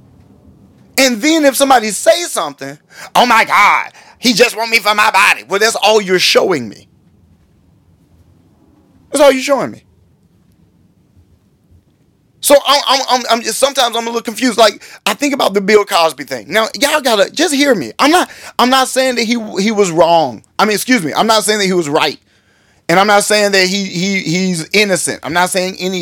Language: English